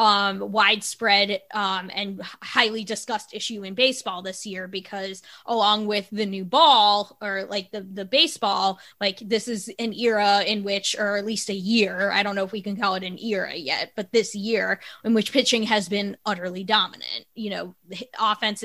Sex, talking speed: female, 185 wpm